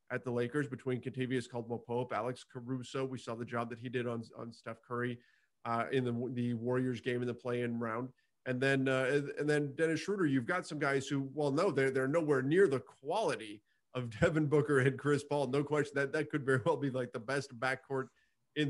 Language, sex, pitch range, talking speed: English, male, 120-140 Hz, 220 wpm